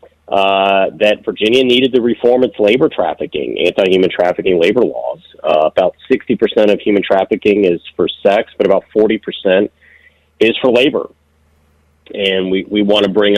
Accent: American